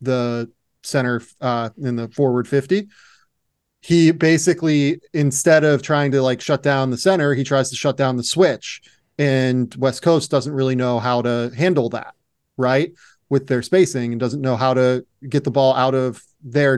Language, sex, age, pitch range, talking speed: English, male, 30-49, 125-150 Hz, 180 wpm